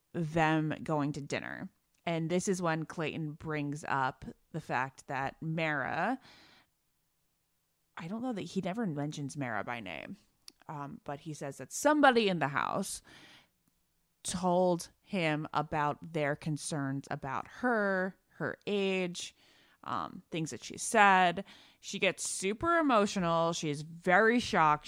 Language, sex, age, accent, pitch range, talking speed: English, female, 20-39, American, 145-190 Hz, 135 wpm